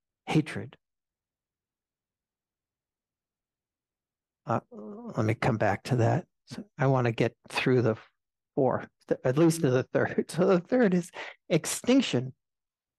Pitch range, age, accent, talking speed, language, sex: 135-180 Hz, 60-79, American, 115 wpm, English, male